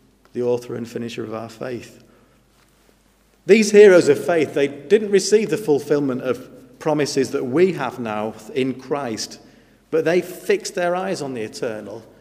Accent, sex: British, male